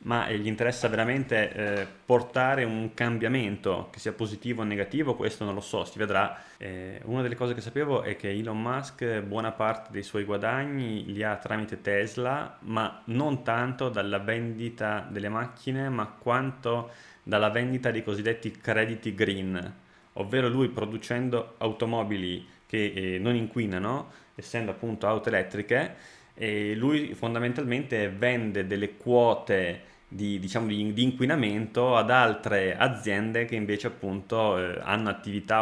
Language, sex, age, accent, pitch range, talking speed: Italian, male, 20-39, native, 105-120 Hz, 140 wpm